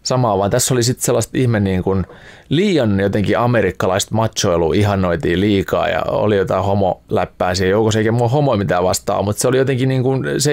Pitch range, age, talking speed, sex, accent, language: 100-130 Hz, 30-49, 180 wpm, male, native, Finnish